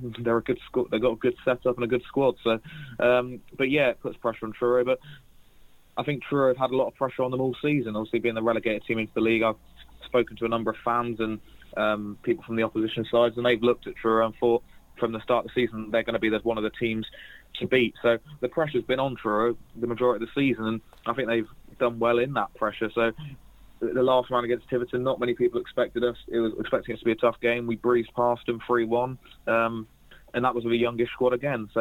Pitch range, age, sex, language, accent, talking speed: 110-125 Hz, 20-39, male, English, British, 260 wpm